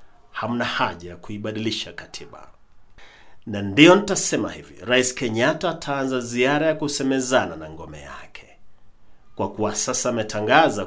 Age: 40-59